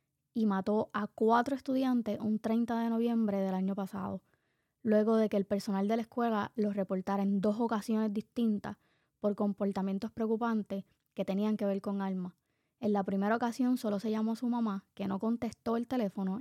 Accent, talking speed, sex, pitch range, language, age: American, 185 wpm, female, 195-230 Hz, Spanish, 20-39